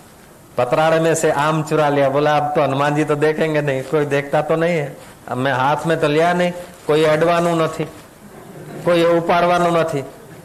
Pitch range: 160-195 Hz